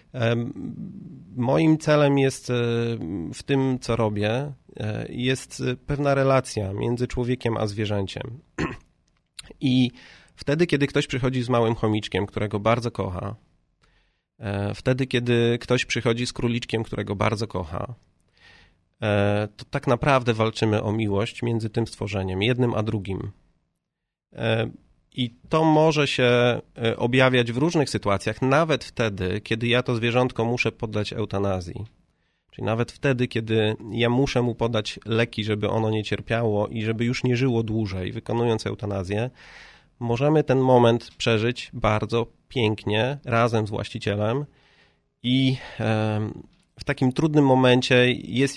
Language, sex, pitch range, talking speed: Polish, male, 105-125 Hz, 120 wpm